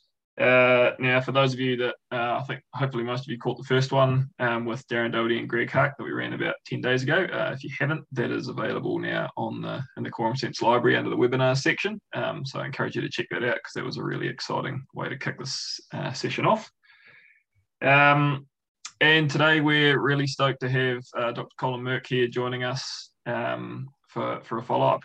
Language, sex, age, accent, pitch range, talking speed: English, male, 20-39, Australian, 120-135 Hz, 225 wpm